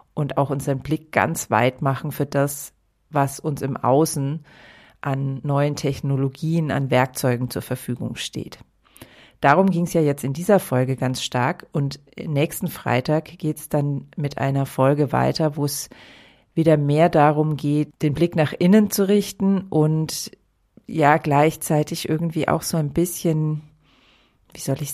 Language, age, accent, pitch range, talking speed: German, 40-59, German, 135-160 Hz, 155 wpm